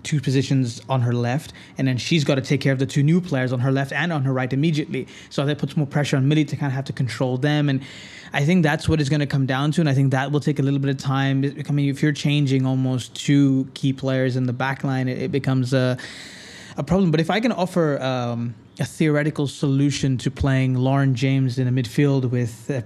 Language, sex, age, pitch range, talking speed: English, male, 20-39, 130-150 Hz, 255 wpm